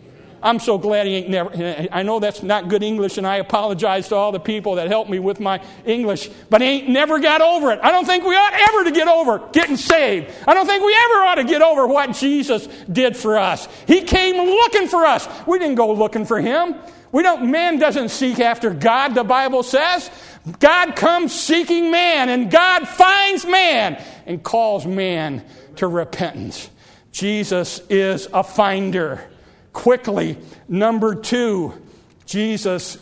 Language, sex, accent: English, male, American